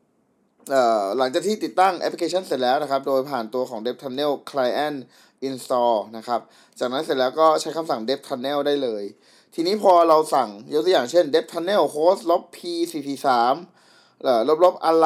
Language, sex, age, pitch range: Thai, male, 20-39, 135-180 Hz